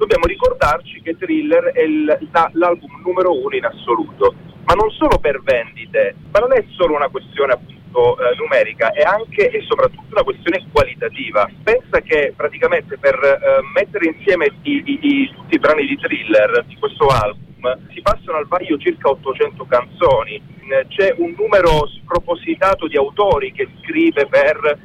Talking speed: 150 wpm